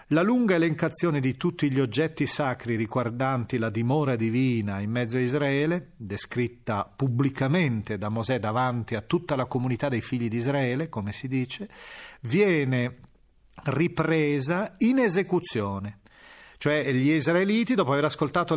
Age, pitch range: 40-59, 115-160 Hz